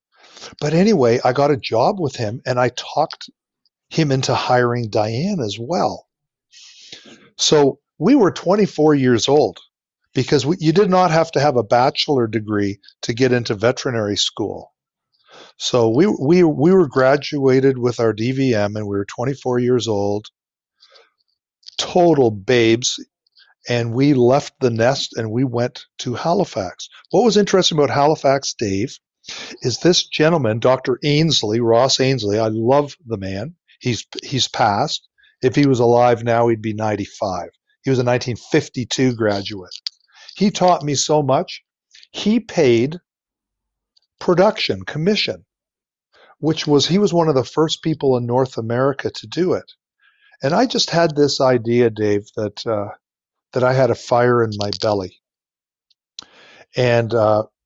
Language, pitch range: English, 115-150 Hz